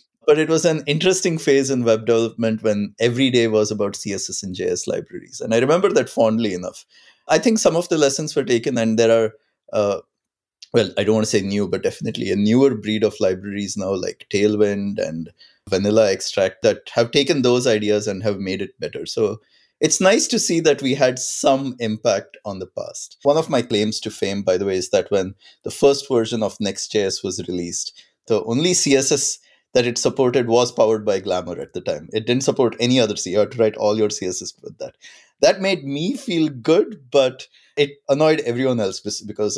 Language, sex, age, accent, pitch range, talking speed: English, male, 20-39, Indian, 105-140 Hz, 205 wpm